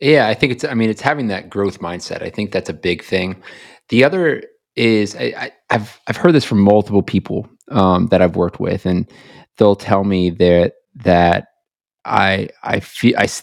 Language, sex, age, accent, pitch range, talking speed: English, male, 30-49, American, 95-125 Hz, 190 wpm